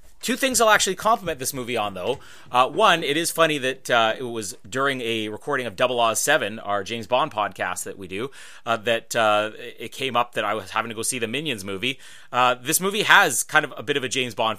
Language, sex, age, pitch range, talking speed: English, male, 30-49, 115-150 Hz, 245 wpm